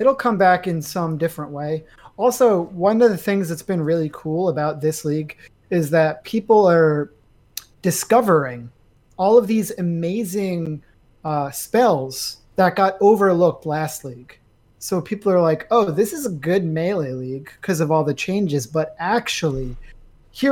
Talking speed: 160 wpm